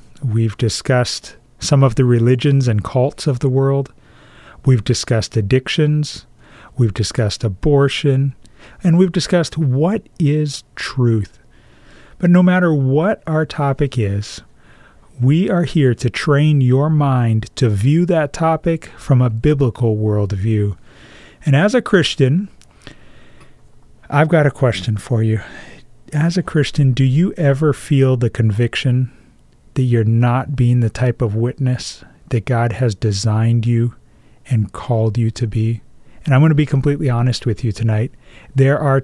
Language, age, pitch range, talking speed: English, 40-59, 115-150 Hz, 145 wpm